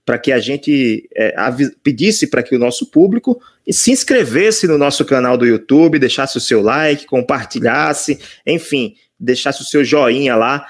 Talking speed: 170 wpm